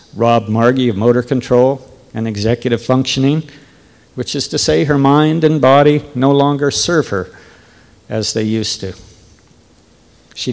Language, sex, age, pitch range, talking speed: English, male, 60-79, 110-155 Hz, 140 wpm